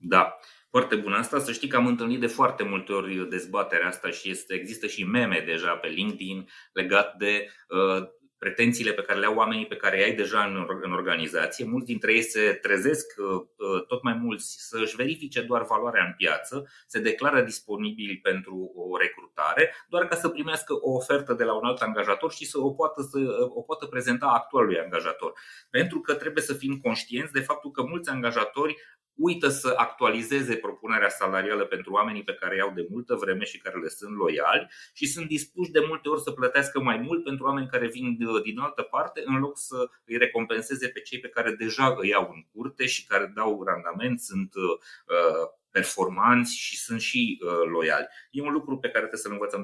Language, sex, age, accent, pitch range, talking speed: Romanian, male, 30-49, native, 105-155 Hz, 195 wpm